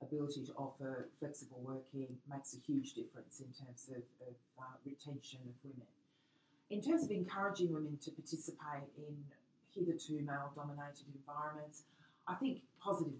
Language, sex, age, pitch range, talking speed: English, female, 40-59, 140-160 Hz, 140 wpm